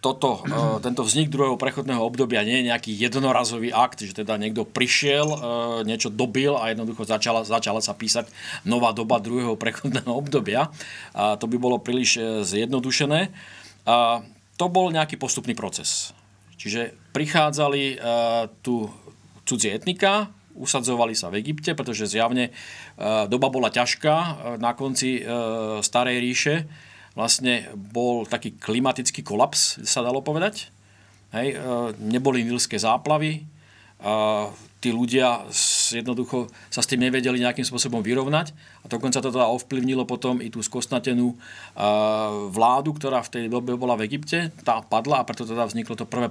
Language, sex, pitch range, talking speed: Slovak, male, 115-135 Hz, 130 wpm